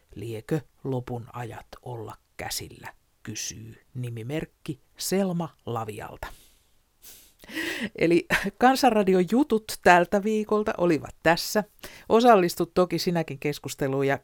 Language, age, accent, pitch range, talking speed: Finnish, 60-79, native, 125-195 Hz, 90 wpm